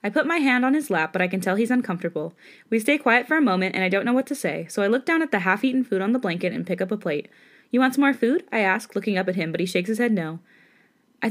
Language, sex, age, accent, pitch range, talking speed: English, female, 20-39, American, 185-260 Hz, 320 wpm